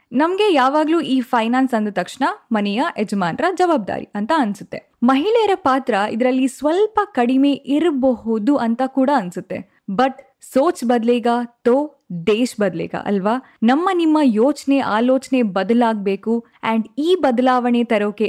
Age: 10-29